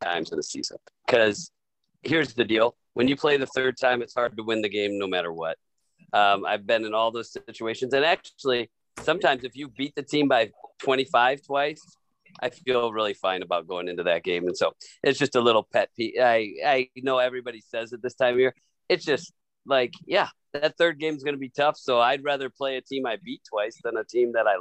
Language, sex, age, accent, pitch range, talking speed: English, male, 40-59, American, 115-145 Hz, 230 wpm